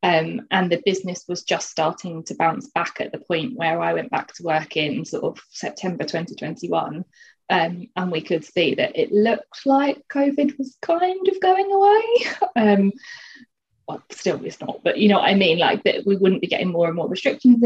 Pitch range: 165-210 Hz